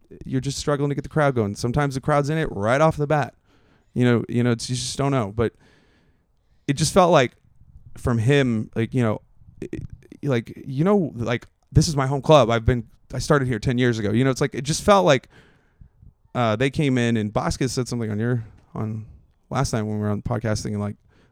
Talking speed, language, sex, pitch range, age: 230 wpm, English, male, 115-145 Hz, 30-49